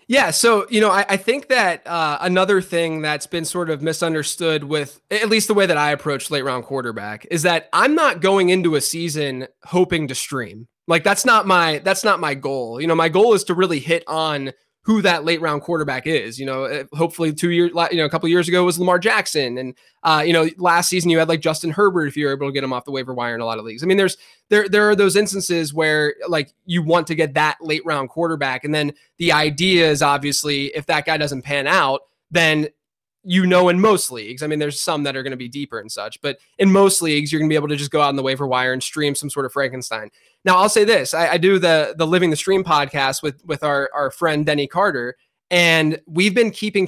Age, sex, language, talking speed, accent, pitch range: 20-39, male, English, 250 wpm, American, 145-180 Hz